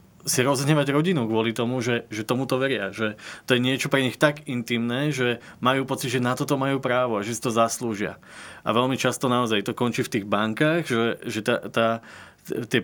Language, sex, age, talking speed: Slovak, male, 20-39, 210 wpm